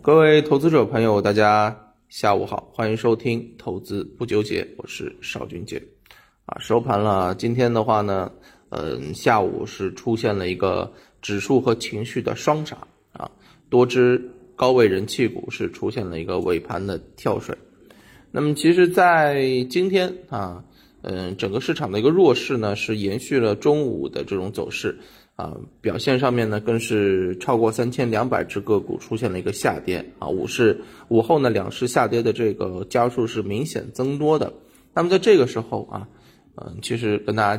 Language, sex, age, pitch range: Chinese, male, 20-39, 105-130 Hz